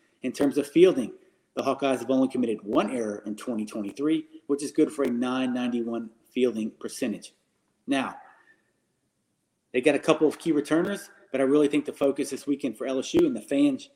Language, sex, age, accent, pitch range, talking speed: English, male, 30-49, American, 125-160 Hz, 180 wpm